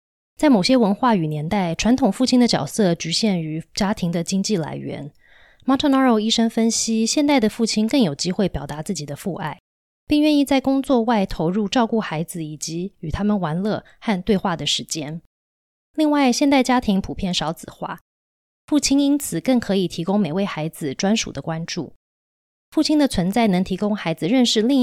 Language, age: Chinese, 20-39